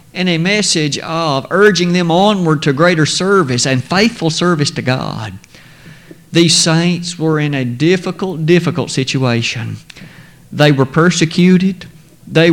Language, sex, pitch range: English, male, 155-200 Hz